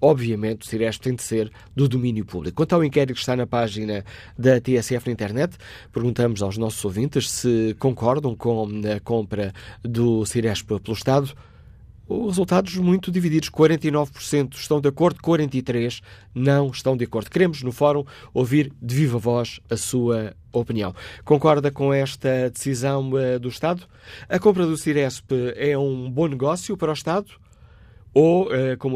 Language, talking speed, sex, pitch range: Portuguese, 155 wpm, male, 115-145 Hz